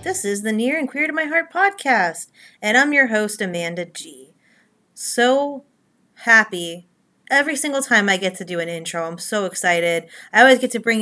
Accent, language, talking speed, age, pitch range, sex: American, English, 190 wpm, 30-49, 185-255 Hz, female